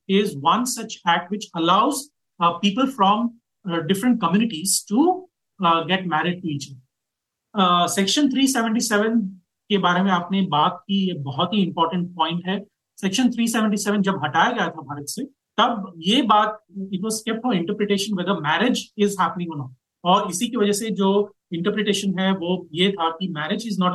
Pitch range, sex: 175-225 Hz, male